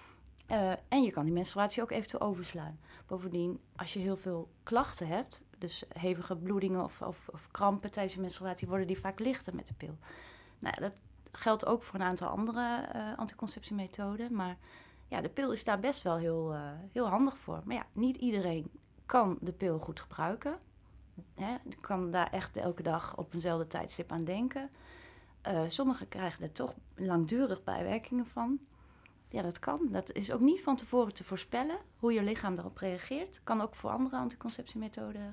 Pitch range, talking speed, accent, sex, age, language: 180-250 Hz, 180 wpm, Dutch, female, 30-49, Dutch